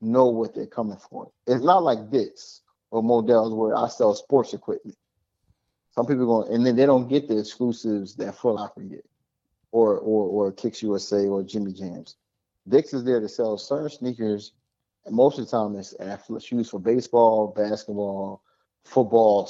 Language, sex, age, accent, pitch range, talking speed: English, male, 30-49, American, 105-120 Hz, 180 wpm